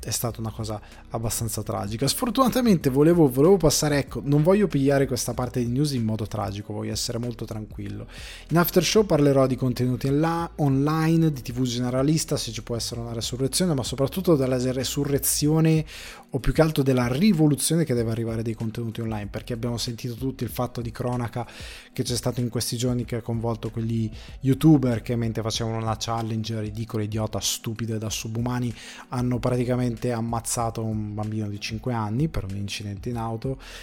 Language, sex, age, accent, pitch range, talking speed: Italian, male, 20-39, native, 115-145 Hz, 175 wpm